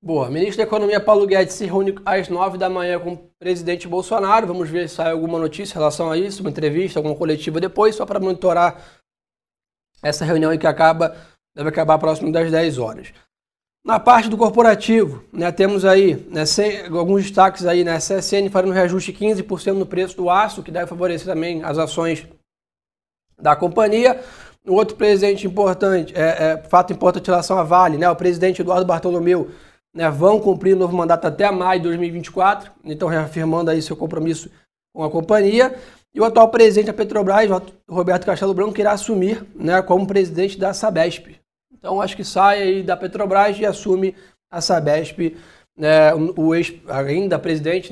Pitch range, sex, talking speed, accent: 165-195 Hz, male, 180 wpm, Brazilian